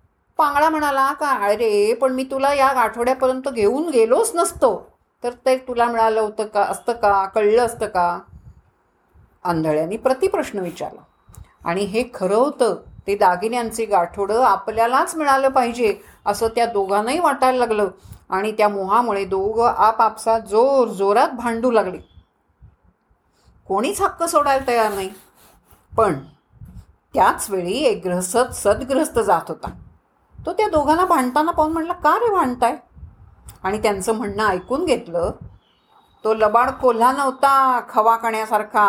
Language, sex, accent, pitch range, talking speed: Marathi, female, native, 200-270 Hz, 120 wpm